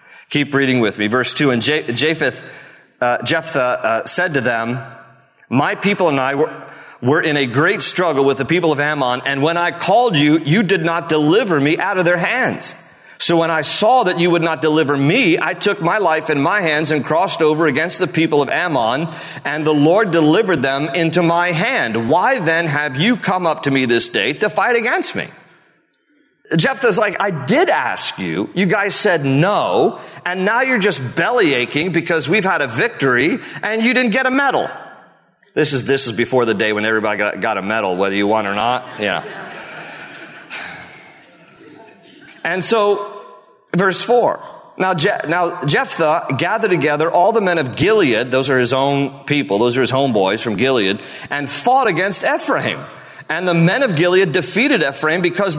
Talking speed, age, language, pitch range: 185 wpm, 40-59, English, 140-185 Hz